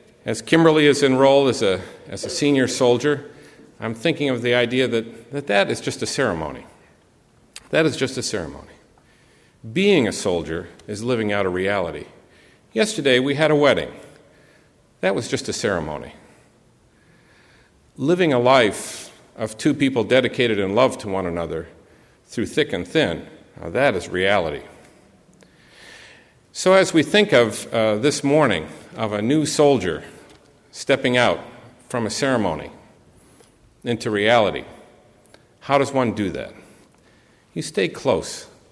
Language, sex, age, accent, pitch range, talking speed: English, male, 50-69, American, 105-140 Hz, 140 wpm